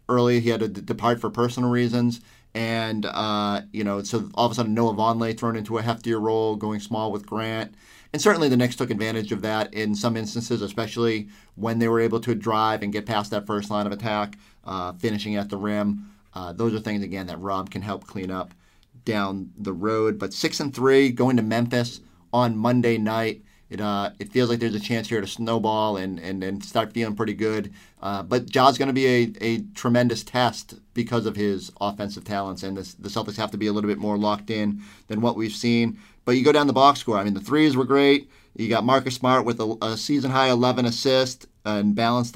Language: English